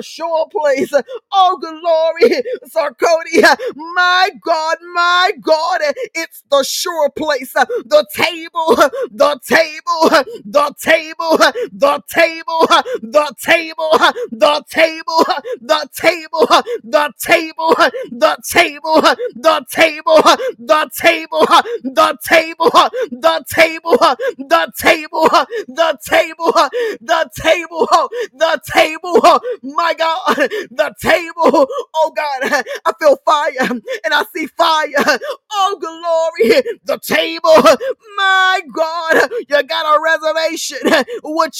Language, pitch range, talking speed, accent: English, 295-350 Hz, 100 wpm, American